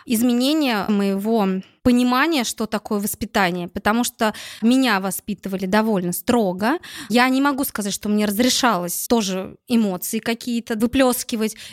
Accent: native